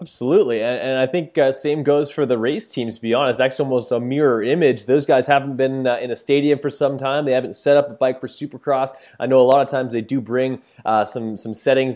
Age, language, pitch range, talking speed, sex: 20-39, English, 120-140 Hz, 265 wpm, male